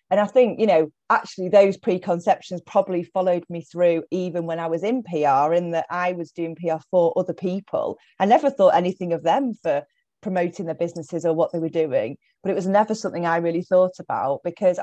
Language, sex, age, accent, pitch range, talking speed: English, female, 30-49, British, 165-200 Hz, 210 wpm